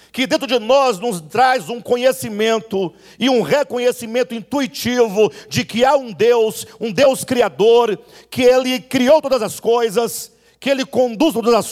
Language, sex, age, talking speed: Portuguese, male, 50-69, 160 wpm